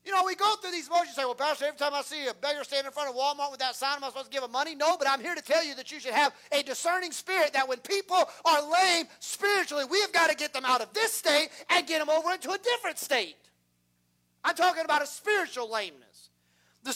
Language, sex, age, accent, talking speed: English, male, 40-59, American, 275 wpm